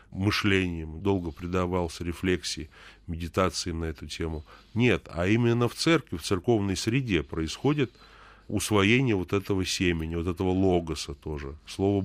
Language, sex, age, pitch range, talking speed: Russian, male, 30-49, 90-110 Hz, 130 wpm